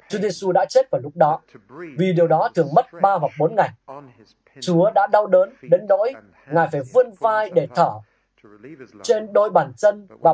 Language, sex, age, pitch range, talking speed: Vietnamese, male, 20-39, 155-210 Hz, 185 wpm